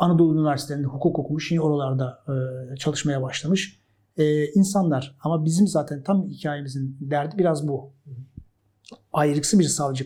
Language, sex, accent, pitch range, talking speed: Turkish, male, native, 135-170 Hz, 125 wpm